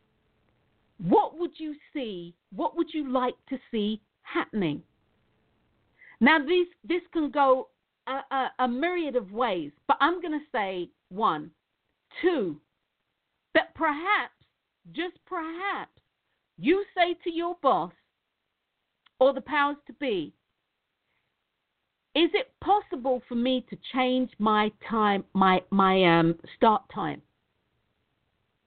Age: 50-69